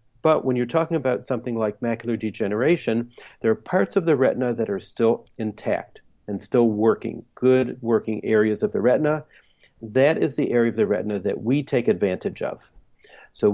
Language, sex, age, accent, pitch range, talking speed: English, male, 50-69, American, 110-130 Hz, 180 wpm